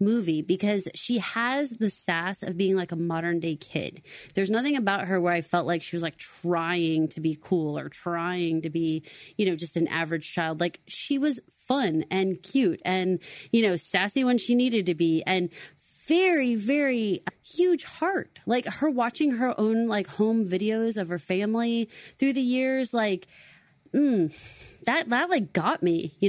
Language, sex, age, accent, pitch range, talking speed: English, female, 30-49, American, 175-225 Hz, 185 wpm